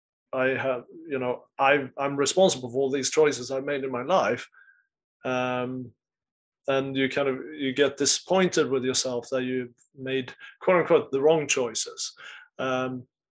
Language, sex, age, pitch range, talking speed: English, male, 30-49, 130-150 Hz, 155 wpm